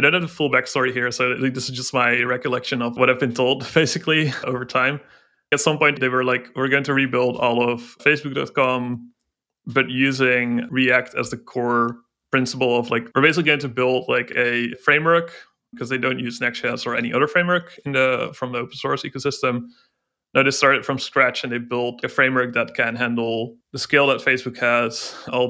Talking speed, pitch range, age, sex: 200 wpm, 120-140 Hz, 20-39, male